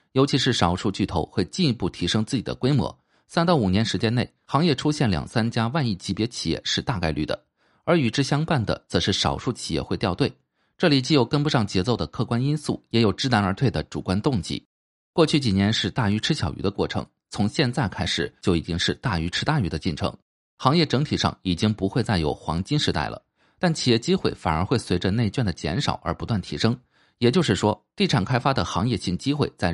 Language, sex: Chinese, male